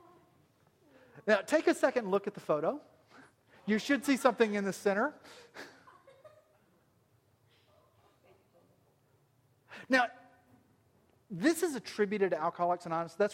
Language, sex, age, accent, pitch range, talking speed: English, male, 40-59, American, 160-220 Hz, 105 wpm